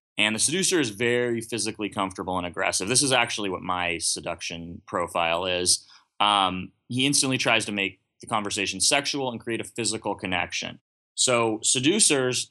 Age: 20-39